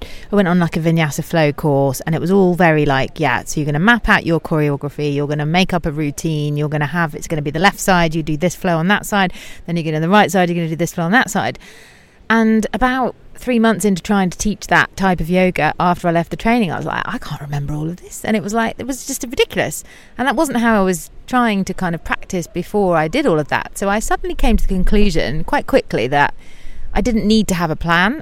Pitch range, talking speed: 160-210 Hz, 280 wpm